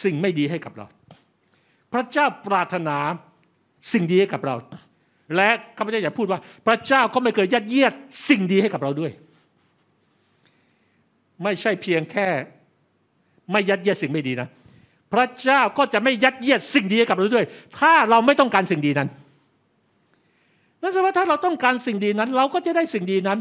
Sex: male